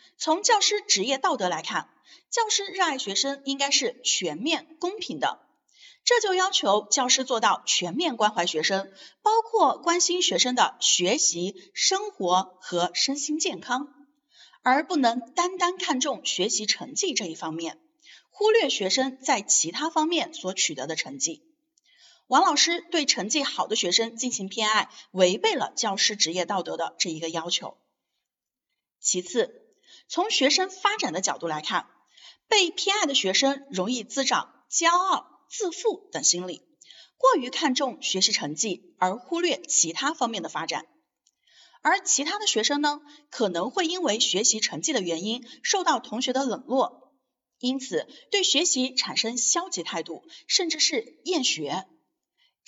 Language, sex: Chinese, female